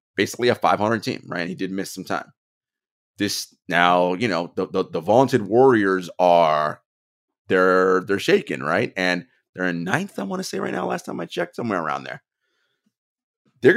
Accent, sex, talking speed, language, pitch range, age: American, male, 190 wpm, English, 95-120 Hz, 30-49